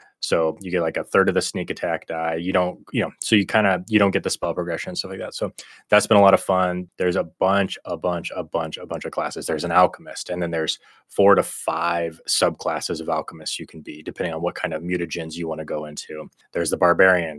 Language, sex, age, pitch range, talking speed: English, male, 20-39, 85-100 Hz, 260 wpm